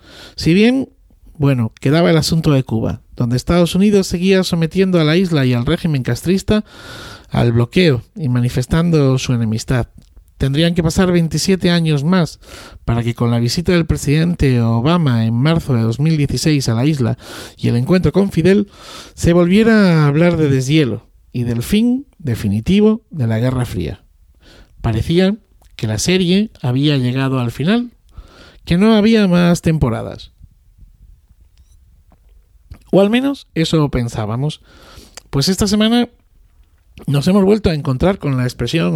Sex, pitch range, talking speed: male, 120-175 Hz, 145 wpm